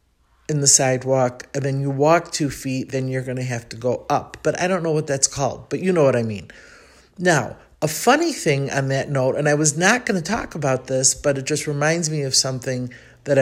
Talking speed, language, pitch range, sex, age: 240 wpm, English, 130-160 Hz, male, 50-69